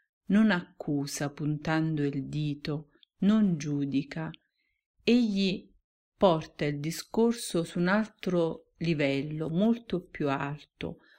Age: 50-69